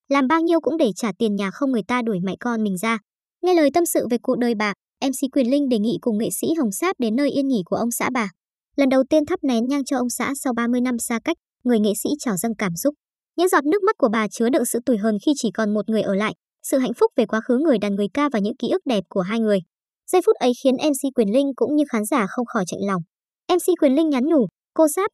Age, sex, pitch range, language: 20-39, male, 220-285 Hz, Vietnamese